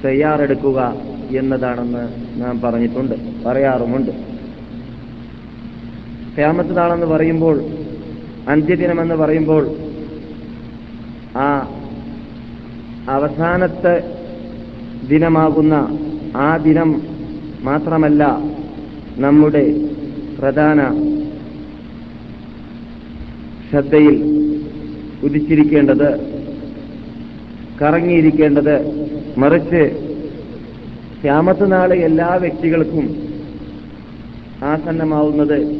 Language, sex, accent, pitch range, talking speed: Malayalam, male, native, 120-155 Hz, 40 wpm